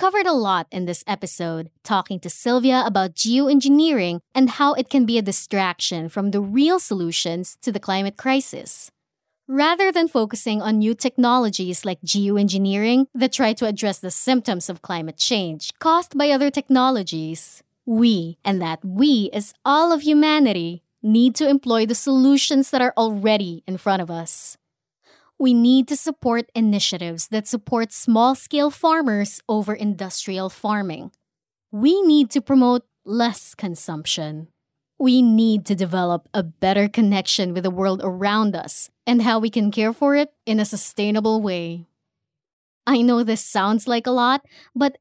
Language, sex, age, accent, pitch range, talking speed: English, female, 20-39, Filipino, 190-260 Hz, 155 wpm